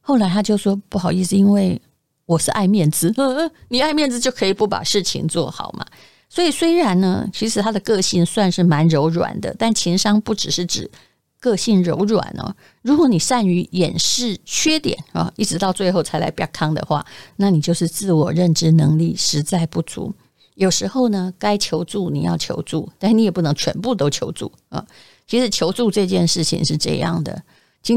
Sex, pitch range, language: female, 165-225 Hz, Chinese